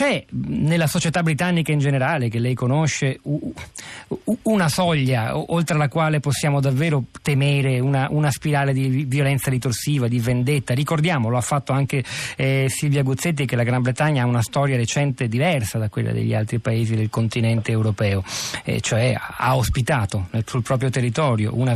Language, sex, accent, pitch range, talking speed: Italian, male, native, 115-140 Hz, 165 wpm